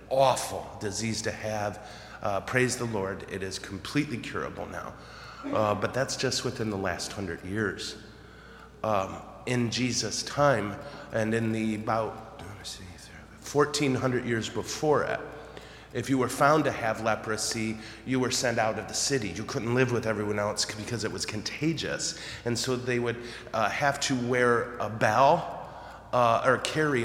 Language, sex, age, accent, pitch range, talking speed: English, male, 30-49, American, 105-125 Hz, 155 wpm